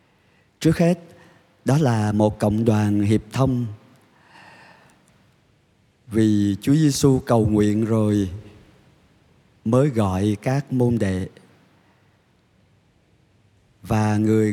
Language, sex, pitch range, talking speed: Vietnamese, male, 105-130 Hz, 90 wpm